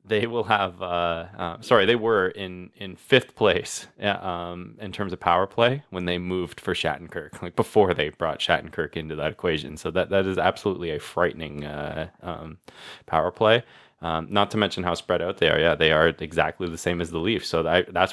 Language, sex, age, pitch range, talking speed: English, male, 20-39, 80-95 Hz, 205 wpm